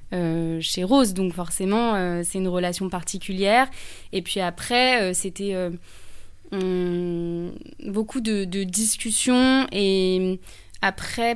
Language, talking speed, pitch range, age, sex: French, 120 wpm, 185-230 Hz, 20-39, female